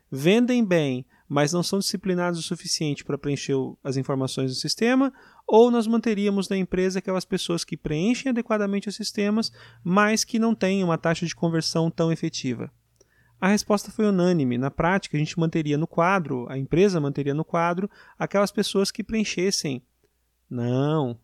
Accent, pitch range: Brazilian, 135-195 Hz